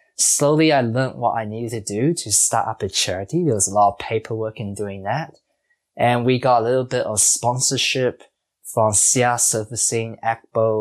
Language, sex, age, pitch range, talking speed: English, male, 20-39, 110-155 Hz, 190 wpm